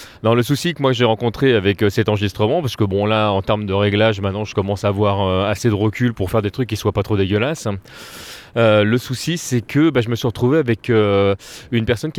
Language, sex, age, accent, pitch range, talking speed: French, male, 30-49, French, 105-125 Hz, 245 wpm